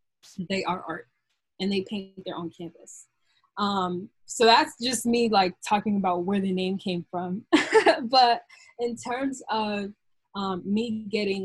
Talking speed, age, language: 150 wpm, 20-39, English